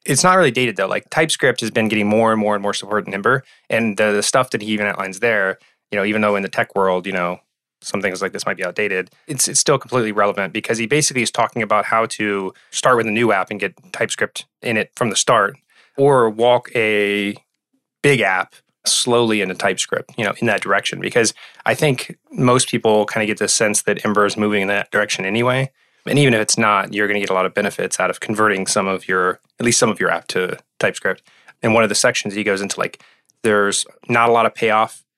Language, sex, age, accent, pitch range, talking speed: English, male, 20-39, American, 100-120 Hz, 245 wpm